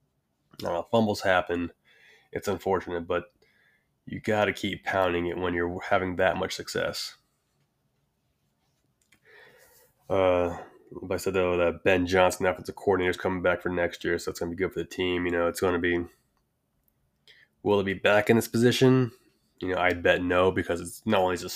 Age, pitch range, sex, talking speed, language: 20-39, 85-95 Hz, male, 180 wpm, English